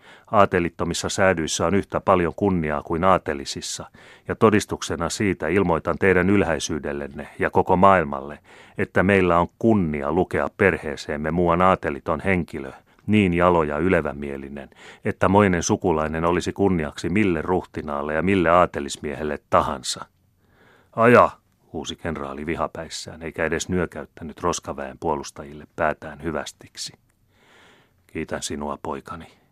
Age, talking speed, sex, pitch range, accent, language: 30-49, 110 wpm, male, 75-95 Hz, native, Finnish